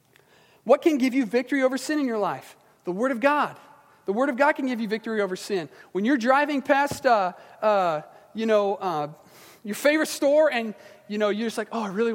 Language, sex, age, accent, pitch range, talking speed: English, male, 40-59, American, 190-240 Hz, 220 wpm